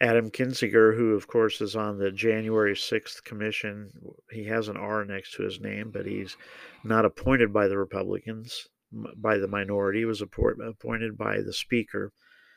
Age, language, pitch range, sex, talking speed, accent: 50-69, English, 100-115 Hz, male, 165 wpm, American